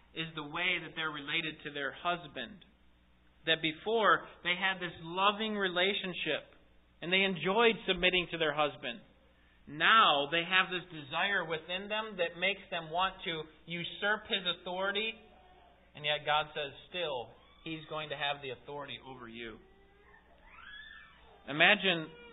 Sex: male